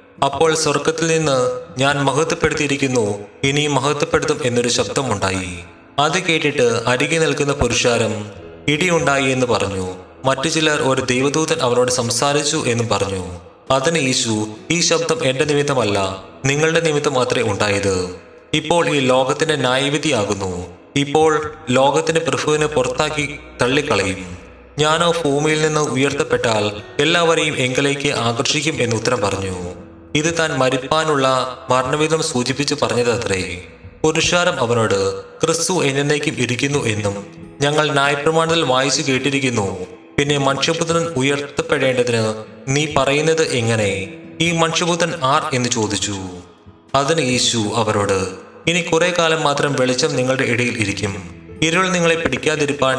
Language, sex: Malayalam, male